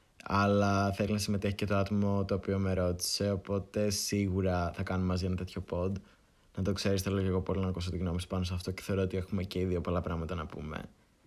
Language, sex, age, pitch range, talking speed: Greek, male, 20-39, 90-105 Hz, 225 wpm